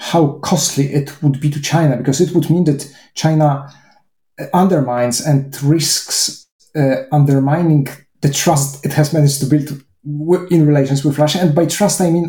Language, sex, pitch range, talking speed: English, male, 140-170 Hz, 165 wpm